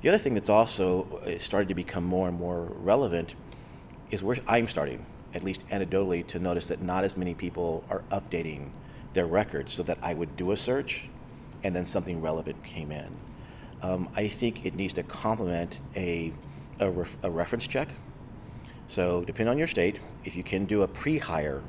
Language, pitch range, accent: English, 85-120 Hz, American